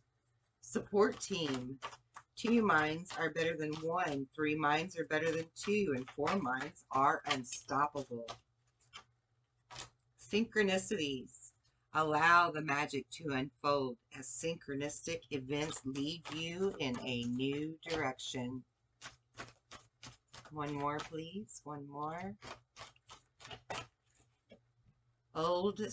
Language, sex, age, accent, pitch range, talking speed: English, female, 40-59, American, 120-155 Hz, 95 wpm